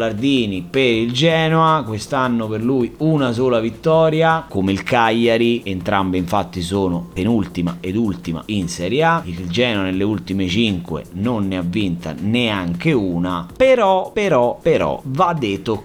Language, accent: Italian, native